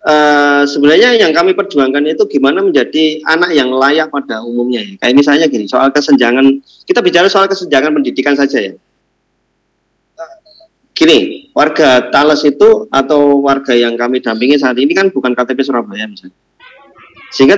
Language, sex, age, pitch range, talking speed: Indonesian, male, 30-49, 130-180 Hz, 145 wpm